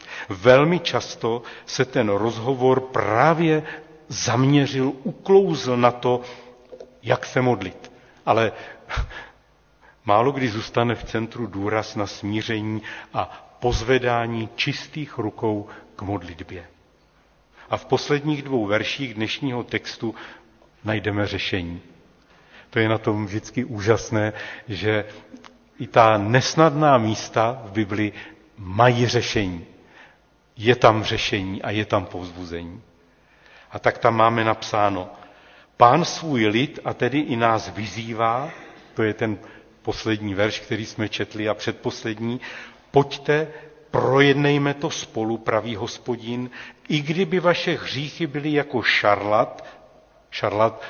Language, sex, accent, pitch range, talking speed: Czech, male, native, 105-130 Hz, 115 wpm